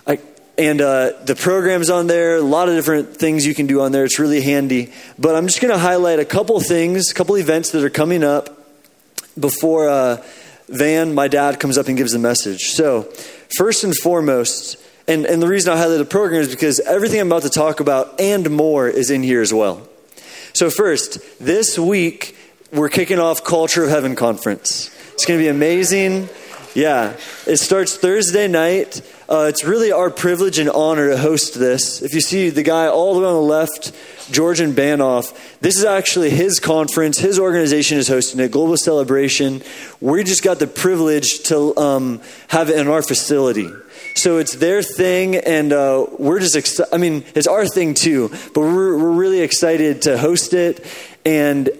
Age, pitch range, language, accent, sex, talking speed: 20-39, 145-180 Hz, English, American, male, 190 wpm